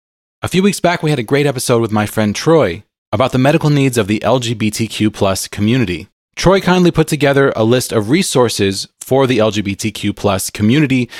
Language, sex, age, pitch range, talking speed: English, male, 30-49, 105-140 Hz, 190 wpm